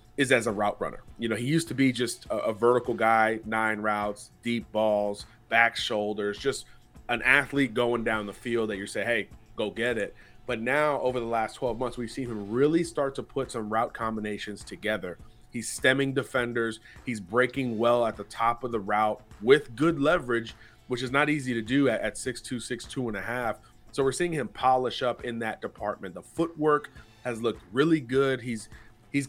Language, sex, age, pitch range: English, male, 30-49, 110-135 Hz